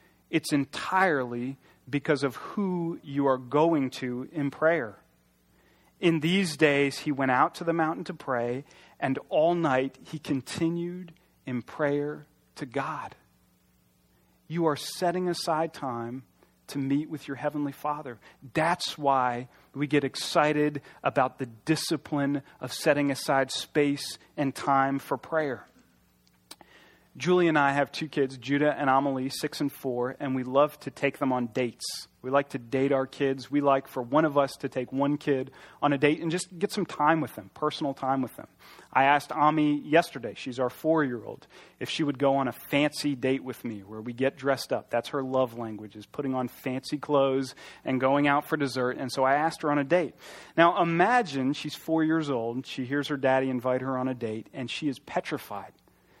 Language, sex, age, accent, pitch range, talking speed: English, male, 40-59, American, 130-150 Hz, 185 wpm